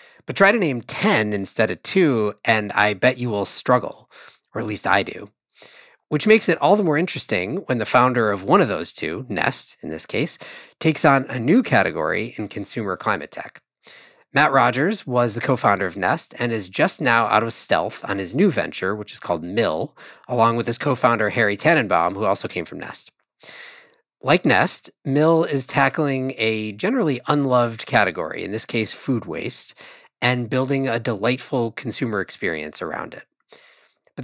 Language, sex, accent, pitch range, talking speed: English, male, American, 110-150 Hz, 180 wpm